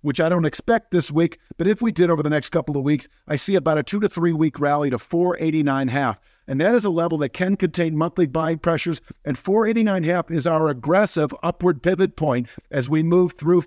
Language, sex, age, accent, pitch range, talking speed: English, male, 50-69, American, 140-175 Hz, 235 wpm